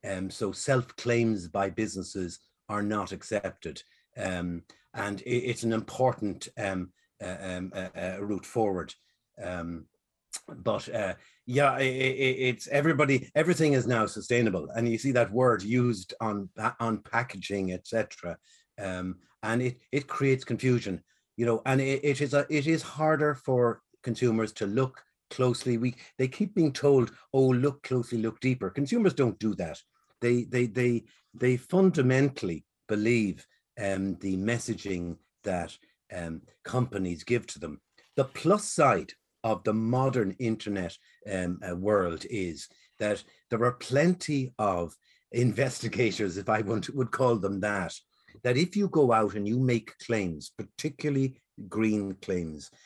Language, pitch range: English, 100-130 Hz